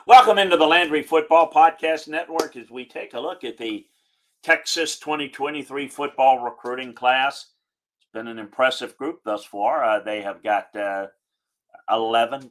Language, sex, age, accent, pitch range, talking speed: English, male, 50-69, American, 110-145 Hz, 155 wpm